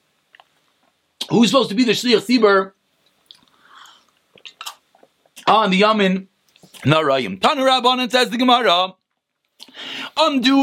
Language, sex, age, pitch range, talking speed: English, male, 30-49, 210-270 Hz, 100 wpm